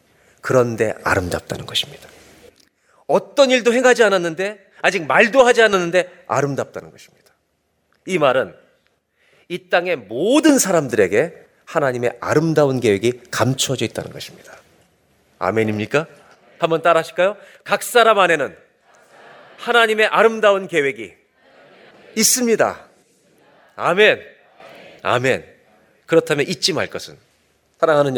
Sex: male